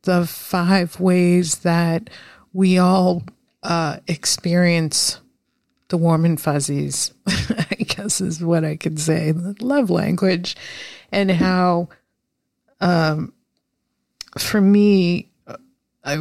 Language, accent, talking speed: English, American, 105 wpm